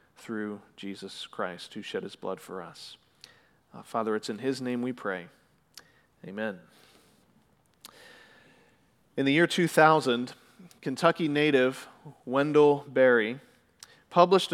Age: 40-59